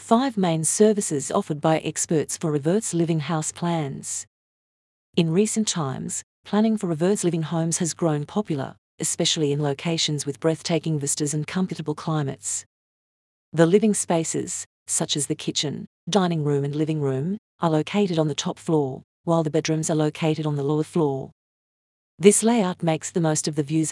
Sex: female